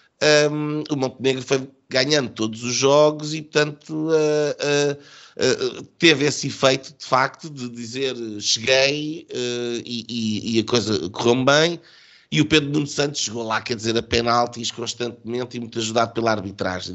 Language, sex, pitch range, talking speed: Portuguese, male, 115-150 Hz, 165 wpm